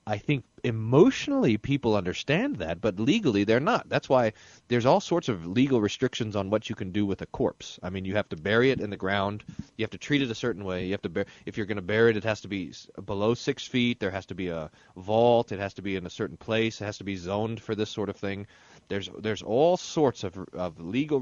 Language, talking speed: English, 260 wpm